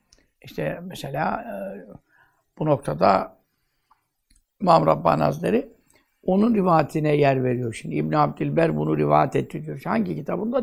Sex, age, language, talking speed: male, 60-79, Turkish, 115 wpm